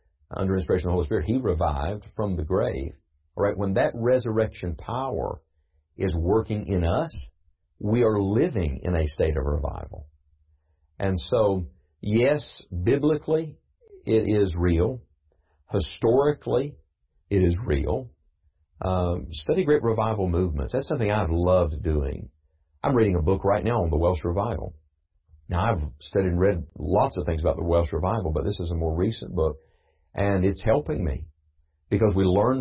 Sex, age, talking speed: male, 50-69, 155 wpm